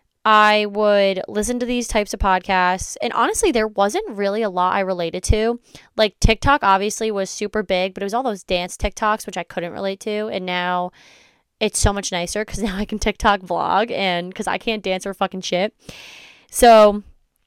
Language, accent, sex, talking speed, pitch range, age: English, American, female, 195 wpm, 185-220 Hz, 10-29